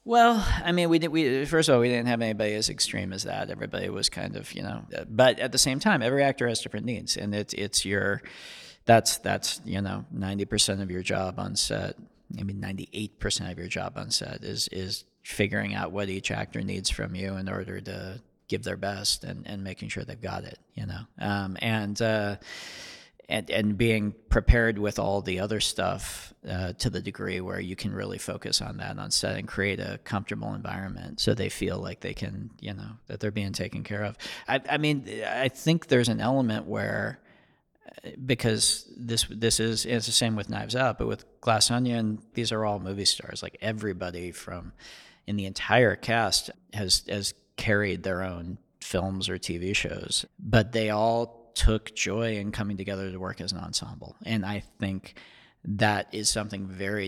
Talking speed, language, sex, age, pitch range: 200 wpm, English, male, 40-59, 95-110 Hz